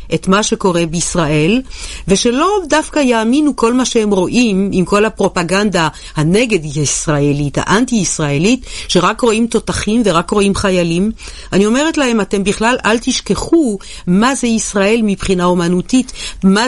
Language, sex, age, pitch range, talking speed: Hebrew, female, 50-69, 170-225 Hz, 125 wpm